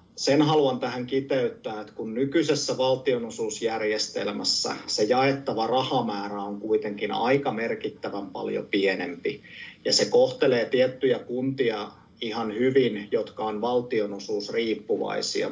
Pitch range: 105-135 Hz